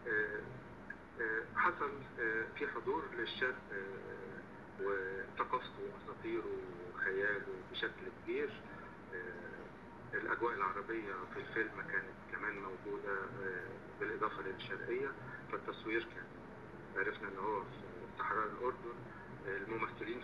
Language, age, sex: Arabic, 50-69, male